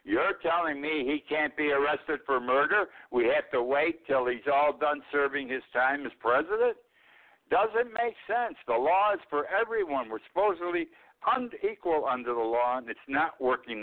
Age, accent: 60-79, American